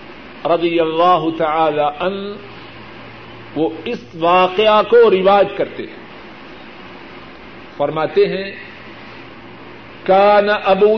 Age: 50-69